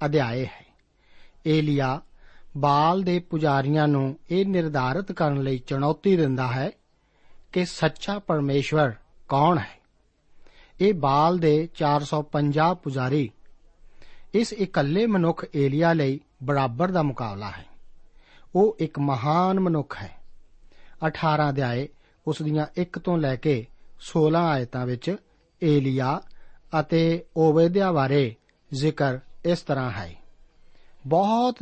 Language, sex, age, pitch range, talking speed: Punjabi, male, 50-69, 140-170 Hz, 90 wpm